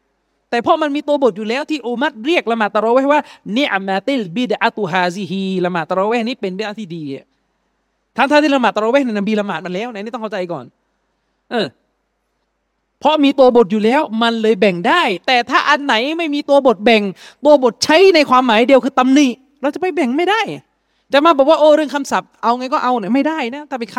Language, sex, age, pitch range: Thai, male, 30-49, 210-275 Hz